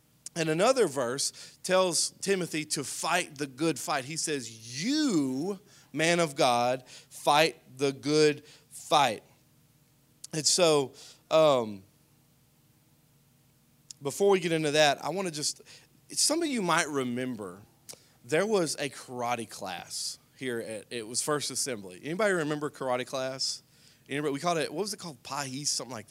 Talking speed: 145 wpm